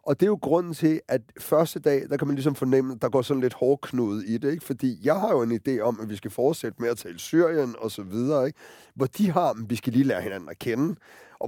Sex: male